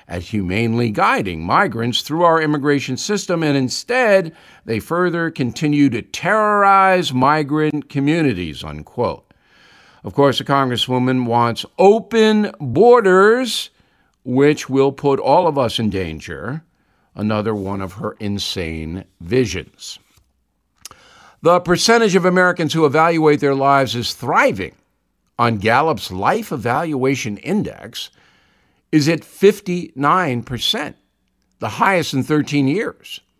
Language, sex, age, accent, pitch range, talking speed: English, male, 50-69, American, 125-170 Hz, 110 wpm